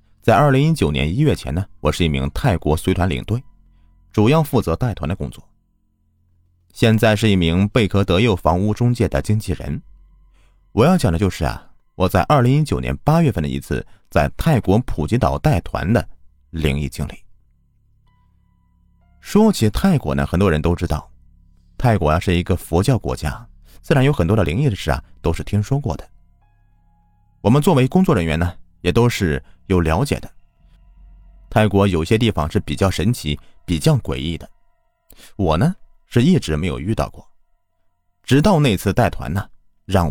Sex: male